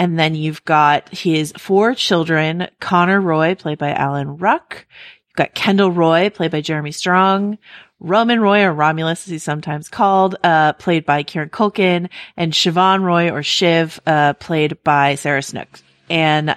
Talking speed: 165 wpm